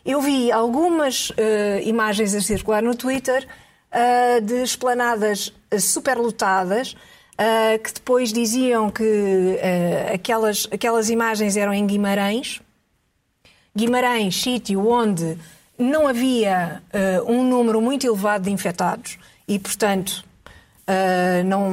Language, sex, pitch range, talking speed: Portuguese, female, 200-280 Hz, 115 wpm